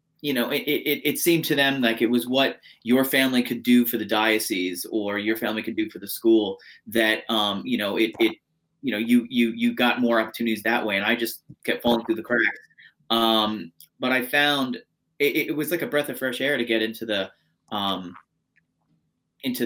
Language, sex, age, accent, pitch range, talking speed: English, male, 30-49, American, 110-125 Hz, 215 wpm